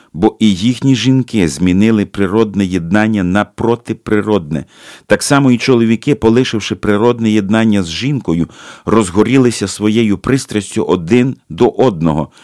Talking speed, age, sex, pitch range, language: 115 wpm, 50-69, male, 90-115 Hz, Ukrainian